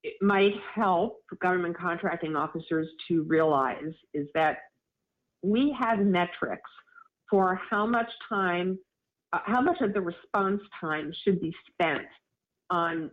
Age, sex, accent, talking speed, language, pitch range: 50-69, female, American, 130 wpm, English, 165-205 Hz